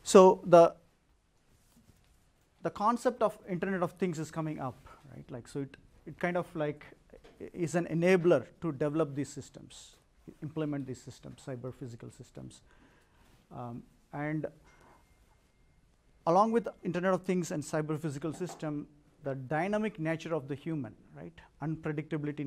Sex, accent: male, Indian